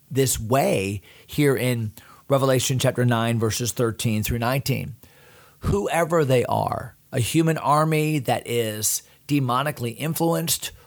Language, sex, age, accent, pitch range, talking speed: English, male, 40-59, American, 120-150 Hz, 115 wpm